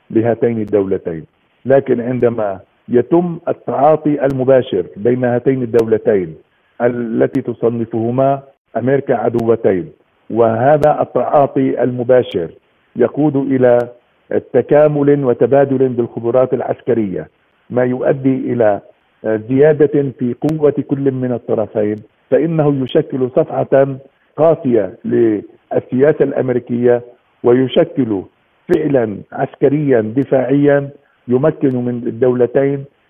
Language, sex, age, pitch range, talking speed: Arabic, male, 50-69, 120-140 Hz, 80 wpm